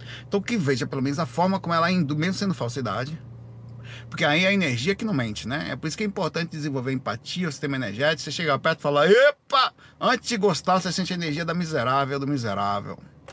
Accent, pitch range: Brazilian, 135-195 Hz